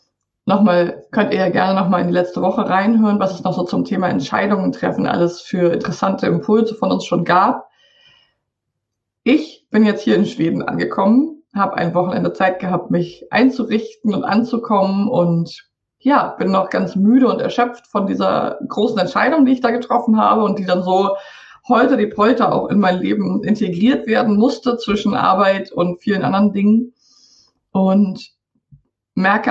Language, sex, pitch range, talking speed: German, female, 190-245 Hz, 165 wpm